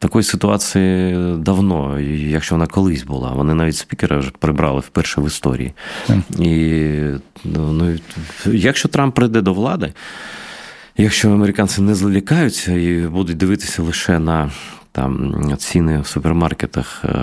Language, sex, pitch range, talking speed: Ukrainian, male, 75-95 Hz, 120 wpm